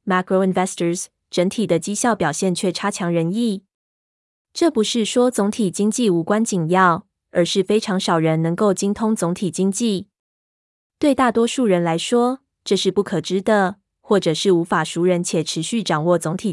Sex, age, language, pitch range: female, 20-39, Chinese, 175-220 Hz